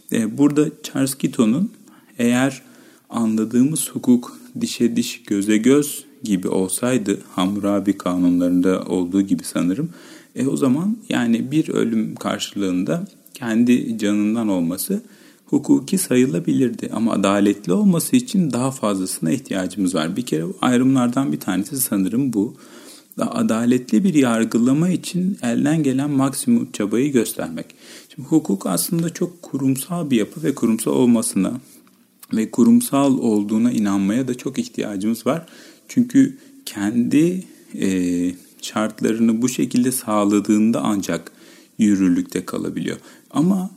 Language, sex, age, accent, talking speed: Turkish, male, 40-59, native, 115 wpm